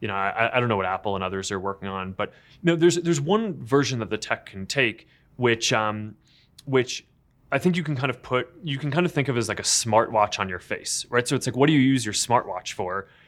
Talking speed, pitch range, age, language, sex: 265 wpm, 100-130 Hz, 20-39, English, male